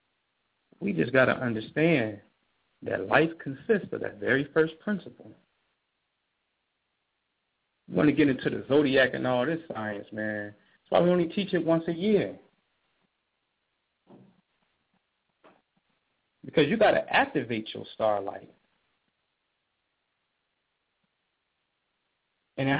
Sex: male